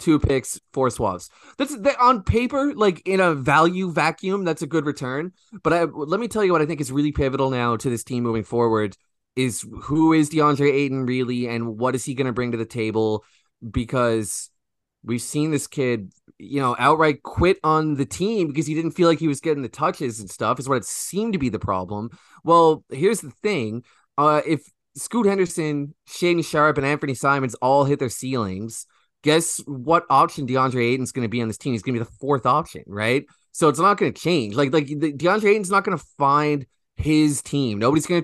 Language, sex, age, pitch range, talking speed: English, male, 20-39, 120-155 Hz, 215 wpm